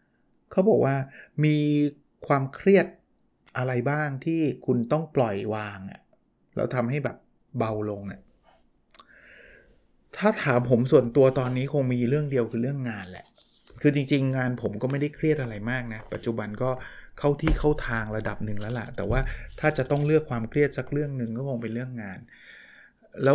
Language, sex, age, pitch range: Thai, male, 20-39, 115-140 Hz